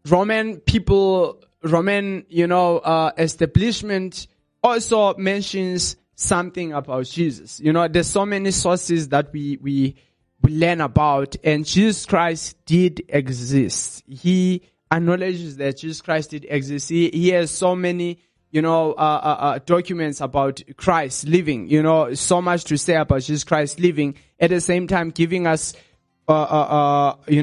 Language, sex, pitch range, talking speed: English, male, 145-175 Hz, 155 wpm